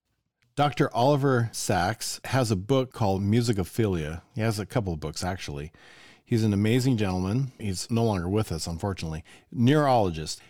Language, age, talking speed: English, 40-59, 150 wpm